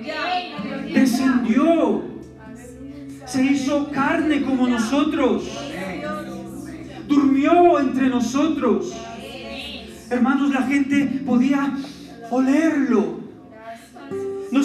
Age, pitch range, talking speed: 30-49, 210-270 Hz, 60 wpm